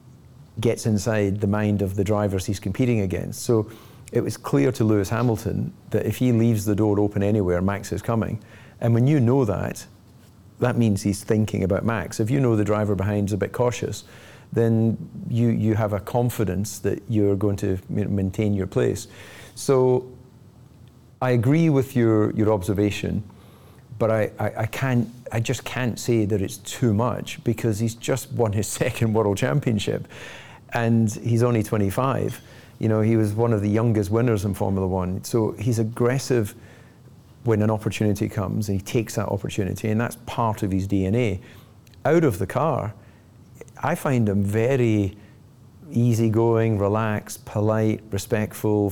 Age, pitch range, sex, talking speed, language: 40-59, 105-120 Hz, male, 165 wpm, Slovak